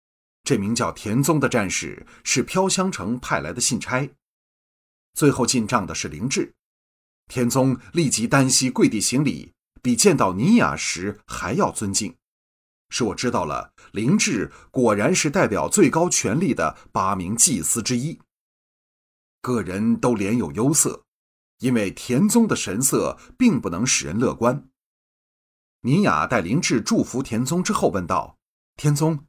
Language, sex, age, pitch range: Chinese, male, 30-49, 115-190 Hz